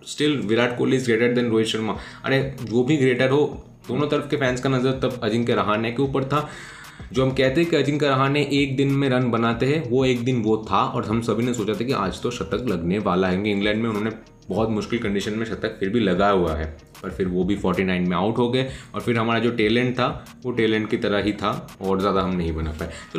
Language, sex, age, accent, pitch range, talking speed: Hindi, male, 20-39, native, 105-130 Hz, 250 wpm